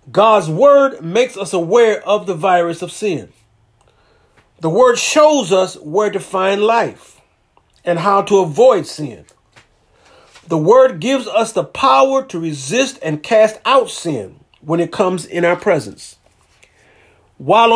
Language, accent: English, American